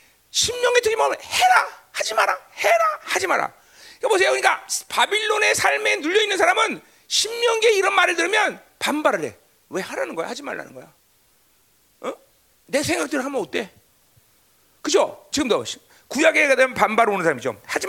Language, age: Korean, 40-59